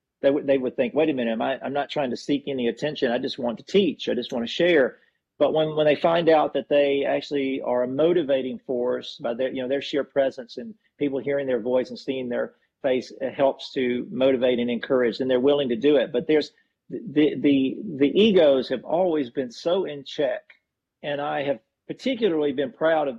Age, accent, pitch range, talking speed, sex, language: 50-69, American, 125-145 Hz, 225 wpm, male, English